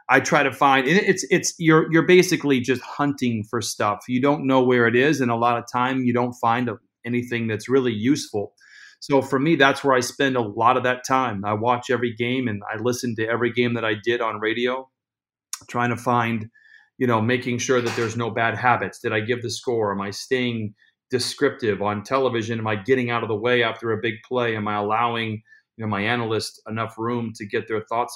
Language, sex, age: English, male, 30-49